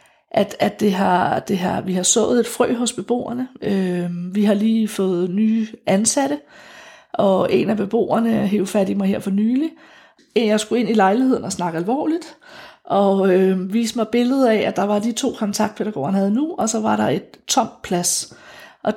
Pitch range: 195-240 Hz